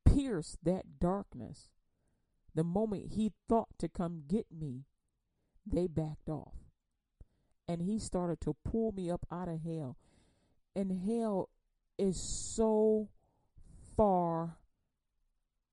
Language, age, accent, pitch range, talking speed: English, 40-59, American, 150-185 Hz, 110 wpm